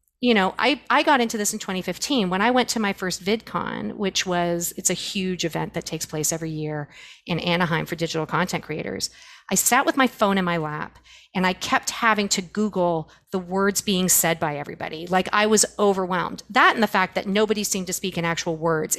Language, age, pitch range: English, 40-59, 185-240 Hz